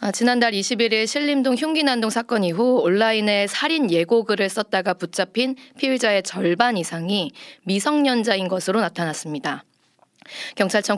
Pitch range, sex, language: 190-245 Hz, female, Korean